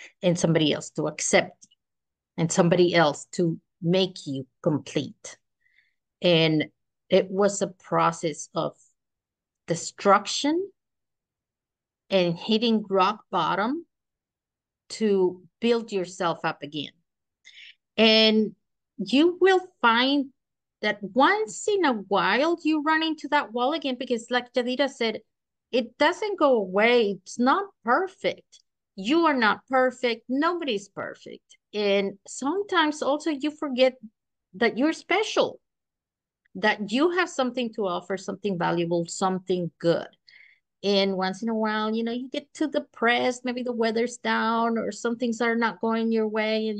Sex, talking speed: female, 130 wpm